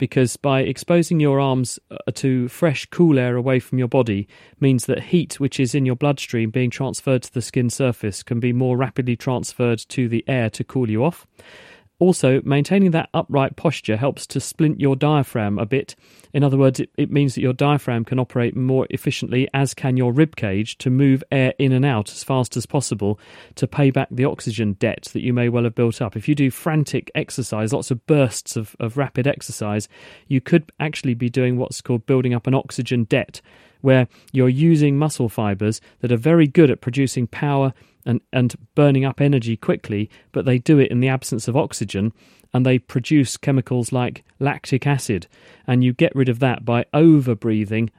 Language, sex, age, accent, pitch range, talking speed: English, male, 40-59, British, 120-140 Hz, 200 wpm